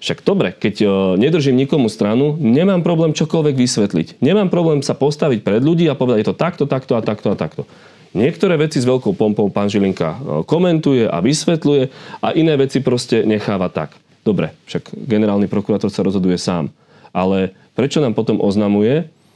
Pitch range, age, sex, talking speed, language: 100-155 Hz, 30-49, male, 170 wpm, Slovak